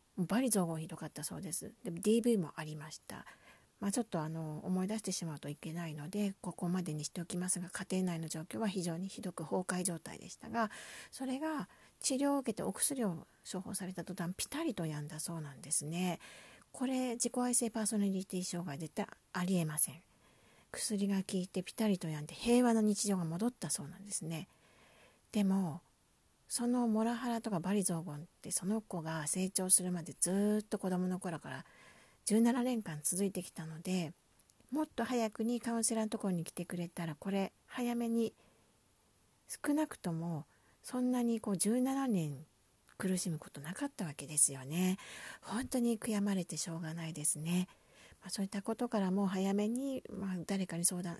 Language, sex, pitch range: Japanese, female, 170-220 Hz